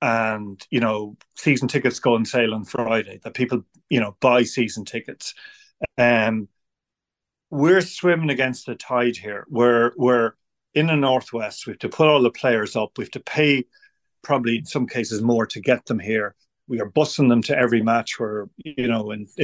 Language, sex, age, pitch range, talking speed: English, male, 40-59, 110-130 Hz, 180 wpm